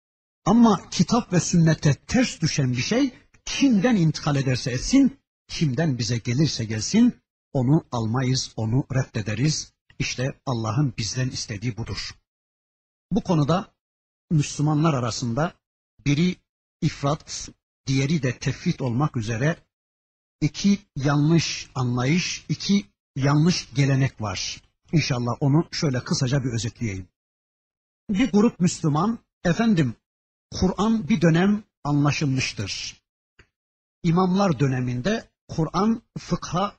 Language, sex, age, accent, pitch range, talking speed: Turkish, male, 60-79, native, 125-185 Hz, 100 wpm